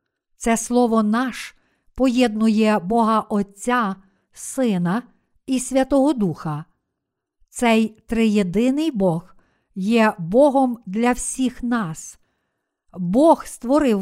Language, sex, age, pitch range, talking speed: Ukrainian, female, 50-69, 200-250 Hz, 85 wpm